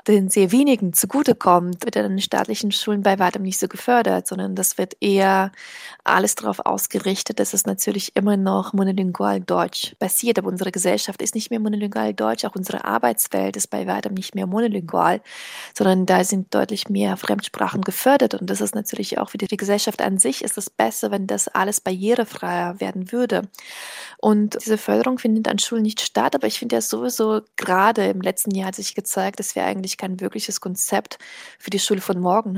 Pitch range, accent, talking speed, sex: 185-215 Hz, German, 190 wpm, female